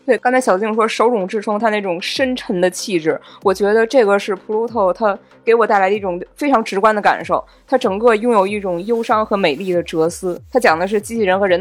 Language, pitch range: Chinese, 185-250 Hz